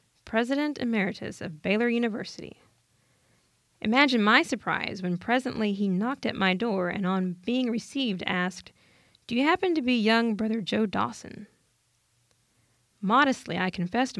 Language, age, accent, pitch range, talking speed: English, 20-39, American, 185-230 Hz, 135 wpm